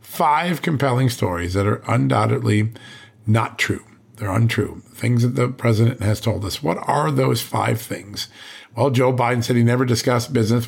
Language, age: English, 50-69